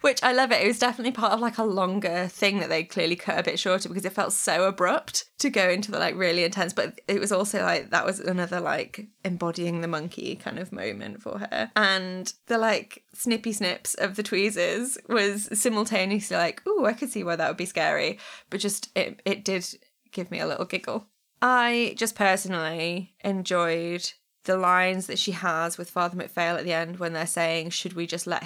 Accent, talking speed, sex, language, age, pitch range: British, 215 wpm, female, English, 20-39, 175-200 Hz